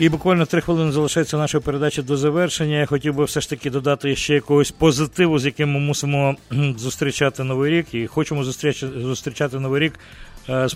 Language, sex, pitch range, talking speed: English, male, 130-155 Hz, 180 wpm